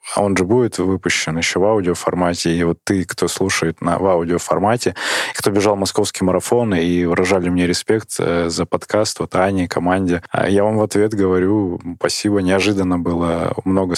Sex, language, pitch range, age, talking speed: male, Russian, 85-100 Hz, 20-39, 165 wpm